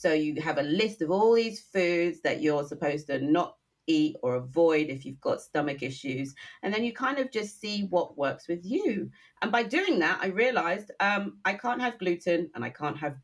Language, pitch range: English, 150-245 Hz